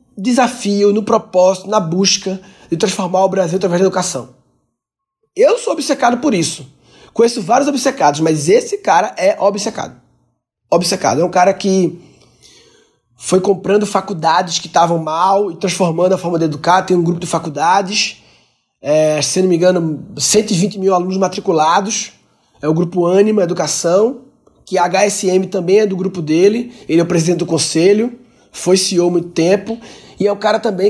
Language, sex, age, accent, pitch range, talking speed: Portuguese, male, 20-39, Brazilian, 175-225 Hz, 165 wpm